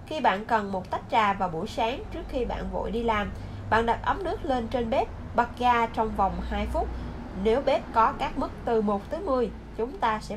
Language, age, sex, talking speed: Vietnamese, 20-39, female, 230 wpm